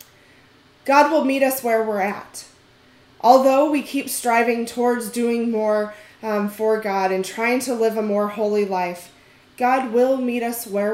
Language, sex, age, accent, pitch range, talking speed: English, female, 20-39, American, 190-235 Hz, 165 wpm